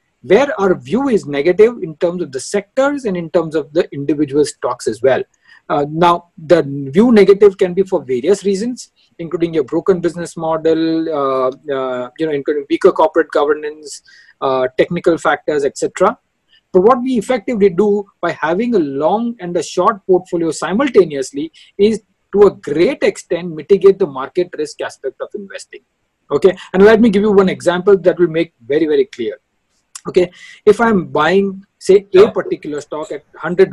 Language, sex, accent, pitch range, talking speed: English, male, Indian, 160-230 Hz, 175 wpm